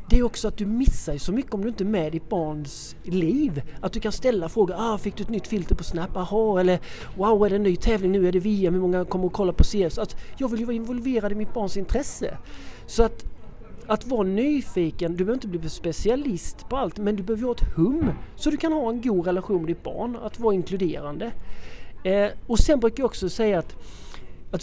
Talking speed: 240 wpm